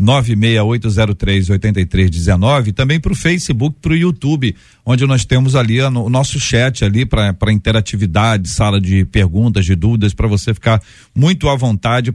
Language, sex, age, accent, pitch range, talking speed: Portuguese, male, 50-69, Brazilian, 100-125 Hz, 155 wpm